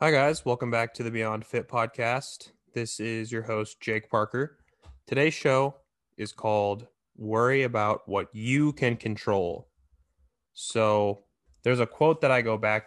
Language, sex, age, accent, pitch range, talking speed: English, male, 20-39, American, 100-115 Hz, 155 wpm